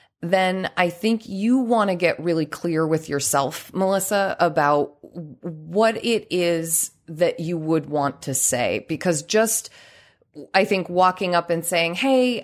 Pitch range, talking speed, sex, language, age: 150-195 Hz, 150 wpm, female, English, 30-49